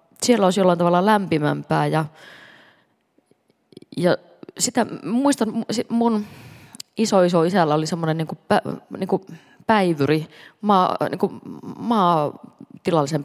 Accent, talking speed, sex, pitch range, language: native, 65 wpm, female, 155-195 Hz, Finnish